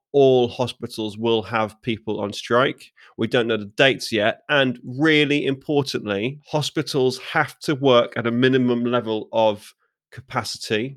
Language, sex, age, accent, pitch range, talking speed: English, male, 30-49, British, 105-130 Hz, 140 wpm